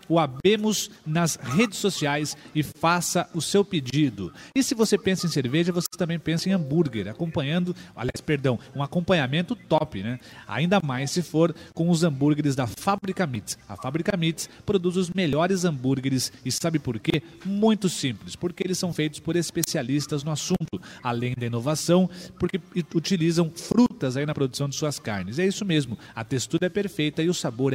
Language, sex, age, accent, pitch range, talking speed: Portuguese, male, 40-59, Brazilian, 150-200 Hz, 175 wpm